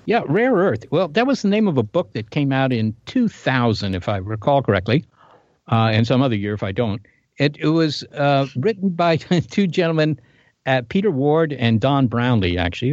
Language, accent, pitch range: English, American, 120-160 Hz